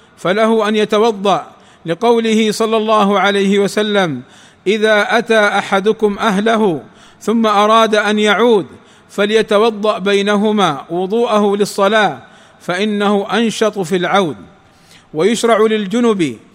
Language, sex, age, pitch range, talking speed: Arabic, male, 50-69, 200-225 Hz, 95 wpm